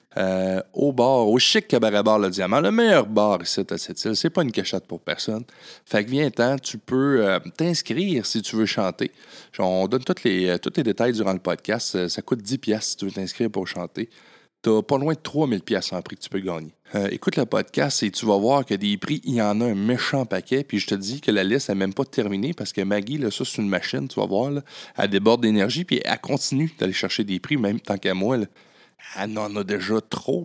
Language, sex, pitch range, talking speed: French, male, 100-135 Hz, 250 wpm